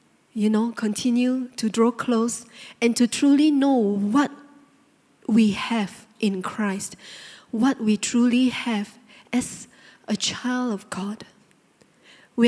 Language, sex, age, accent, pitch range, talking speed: English, female, 20-39, Malaysian, 205-245 Hz, 120 wpm